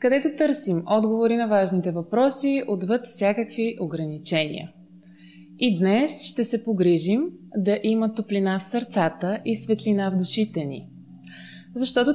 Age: 20-39